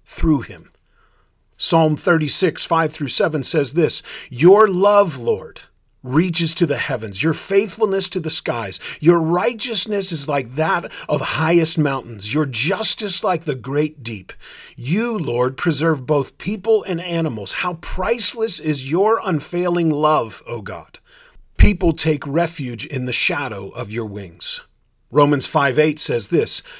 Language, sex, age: English, male, 40-59